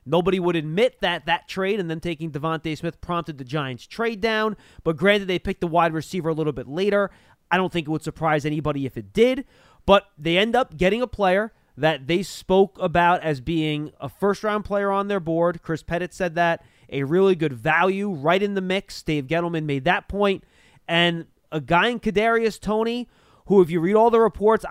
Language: English